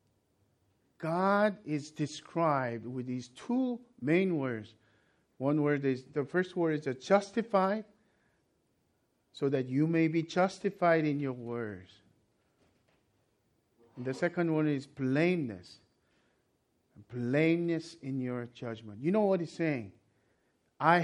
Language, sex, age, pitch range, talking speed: English, male, 50-69, 130-210 Hz, 120 wpm